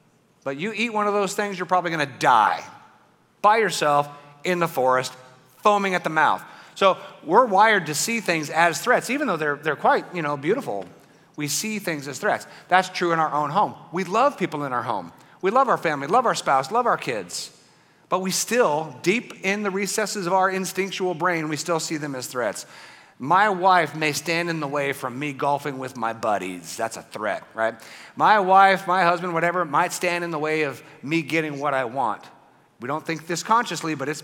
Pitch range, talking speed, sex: 145-180 Hz, 210 wpm, male